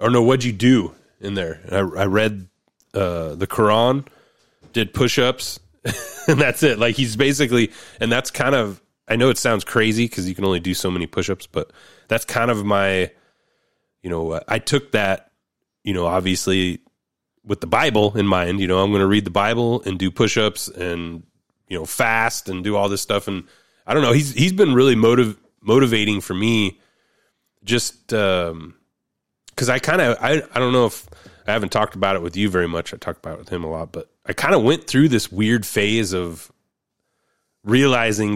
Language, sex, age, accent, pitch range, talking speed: English, male, 30-49, American, 95-120 Hz, 195 wpm